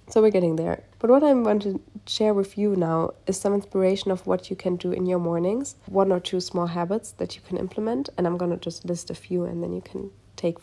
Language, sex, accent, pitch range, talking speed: English, female, German, 175-210 Hz, 260 wpm